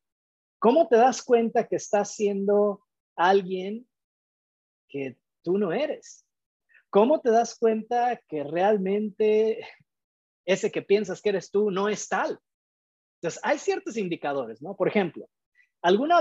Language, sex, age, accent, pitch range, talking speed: Spanish, male, 40-59, Mexican, 135-220 Hz, 130 wpm